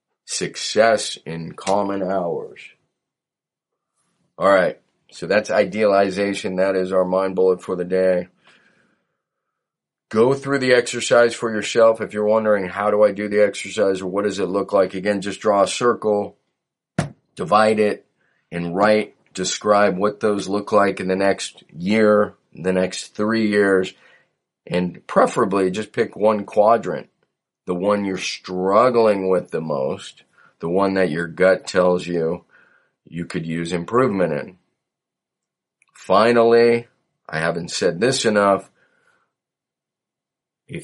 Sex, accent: male, American